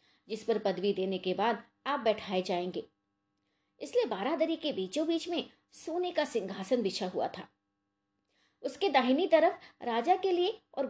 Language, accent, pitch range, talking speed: Hindi, native, 185-300 Hz, 155 wpm